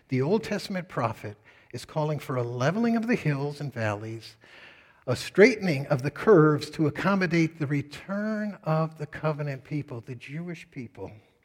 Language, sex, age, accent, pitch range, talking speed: English, male, 60-79, American, 115-170 Hz, 155 wpm